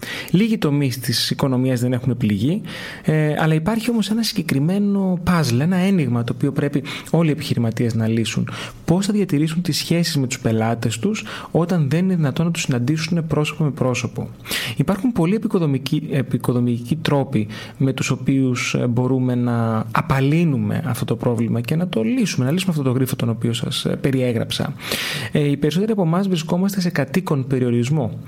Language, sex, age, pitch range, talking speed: Greek, male, 30-49, 125-170 Hz, 160 wpm